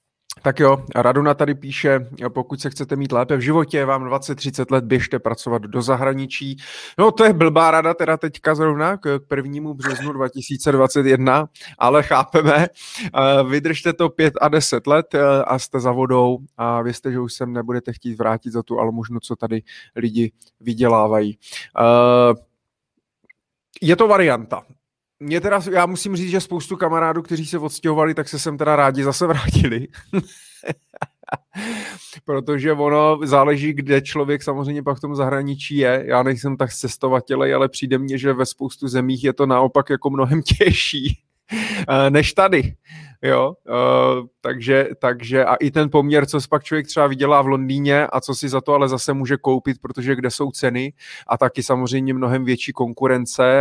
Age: 30-49